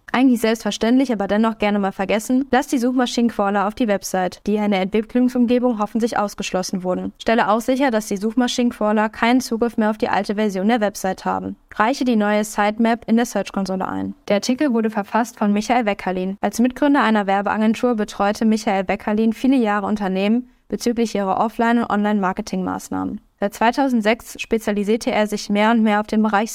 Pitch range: 200-230 Hz